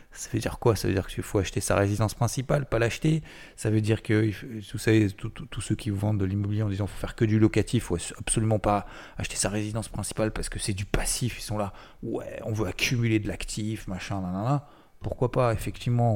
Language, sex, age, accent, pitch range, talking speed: French, male, 20-39, French, 100-120 Hz, 225 wpm